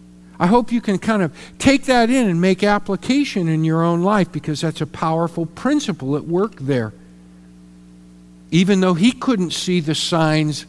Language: English